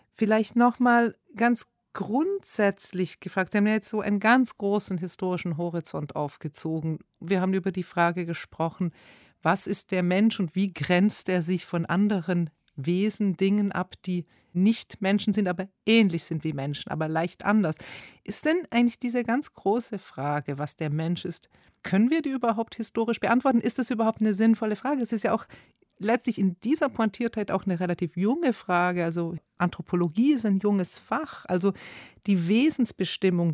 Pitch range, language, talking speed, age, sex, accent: 165-220 Hz, German, 170 wpm, 40-59, female, German